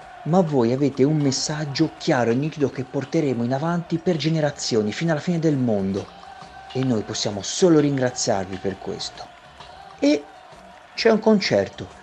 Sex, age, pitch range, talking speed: male, 40-59, 140-205 Hz, 150 wpm